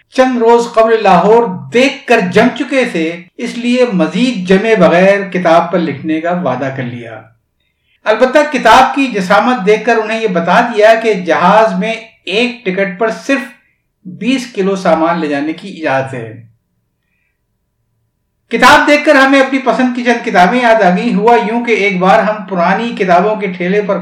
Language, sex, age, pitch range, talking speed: Urdu, male, 60-79, 170-235 Hz, 170 wpm